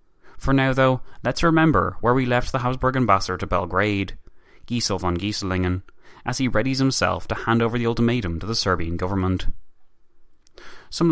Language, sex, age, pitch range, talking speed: English, male, 20-39, 95-120 Hz, 160 wpm